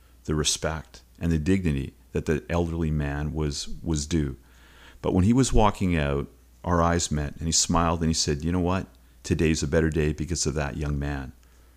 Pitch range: 70-85 Hz